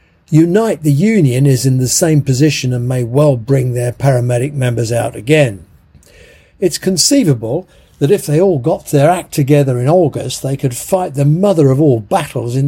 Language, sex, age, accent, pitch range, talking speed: English, male, 50-69, British, 125-155 Hz, 180 wpm